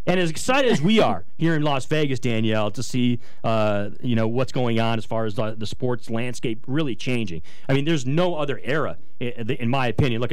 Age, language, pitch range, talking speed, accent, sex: 30-49, English, 115-135 Hz, 215 wpm, American, male